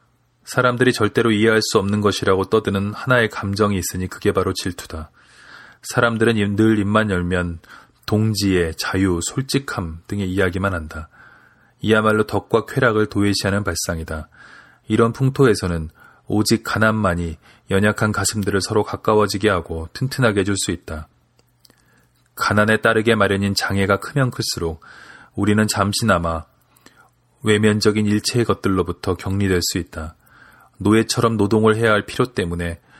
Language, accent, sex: Korean, native, male